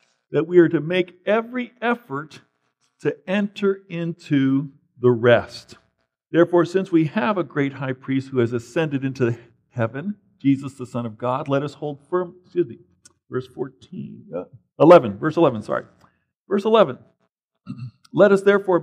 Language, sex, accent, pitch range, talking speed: English, male, American, 135-195 Hz, 150 wpm